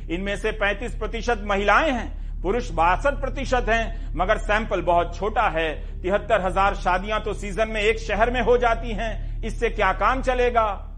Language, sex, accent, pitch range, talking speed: Hindi, male, native, 185-235 Hz, 170 wpm